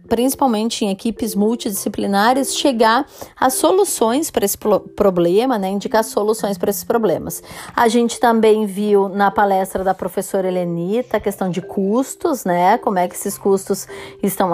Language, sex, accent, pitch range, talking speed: Portuguese, female, Brazilian, 190-230 Hz, 155 wpm